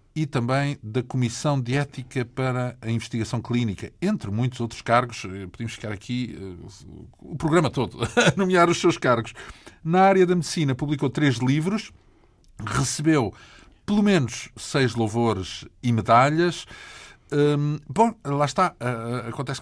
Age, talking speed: 50-69, 135 wpm